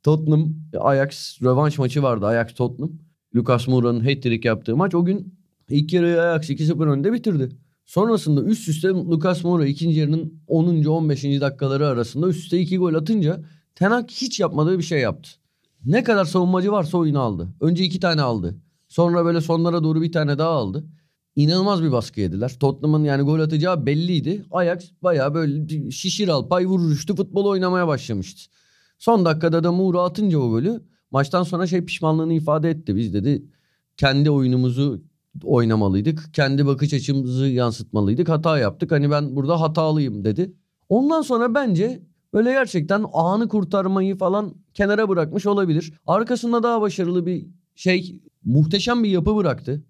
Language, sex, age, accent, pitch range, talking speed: Turkish, male, 30-49, native, 145-185 Hz, 155 wpm